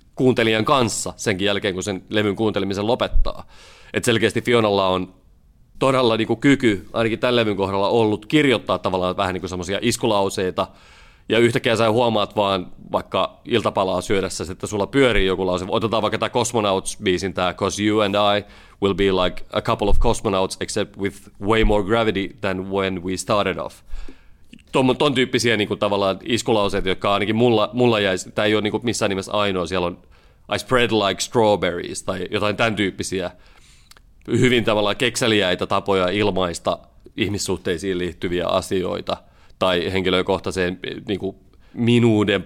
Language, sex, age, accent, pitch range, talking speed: Finnish, male, 30-49, native, 95-115 Hz, 150 wpm